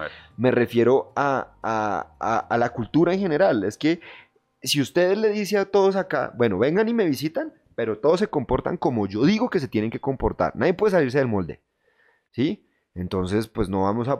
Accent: Colombian